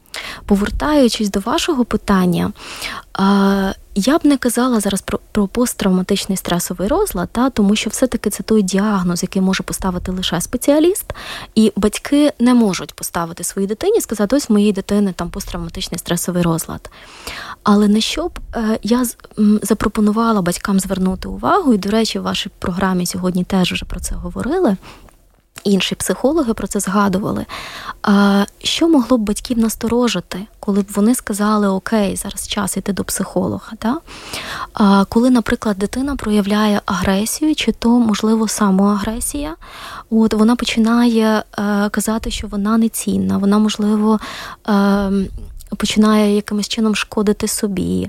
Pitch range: 195-225 Hz